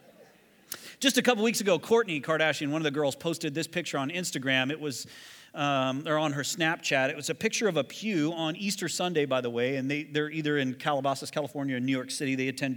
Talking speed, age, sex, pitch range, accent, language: 225 wpm, 30-49, male, 135-175 Hz, American, English